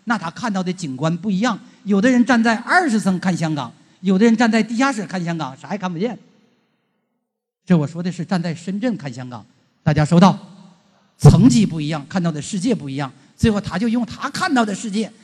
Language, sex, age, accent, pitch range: Chinese, male, 50-69, native, 155-210 Hz